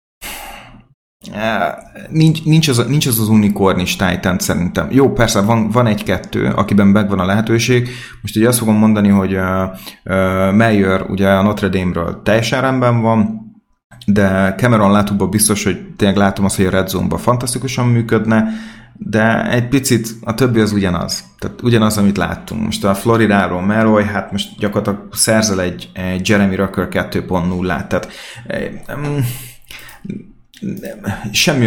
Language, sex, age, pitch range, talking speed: Hungarian, male, 30-49, 95-115 Hz, 140 wpm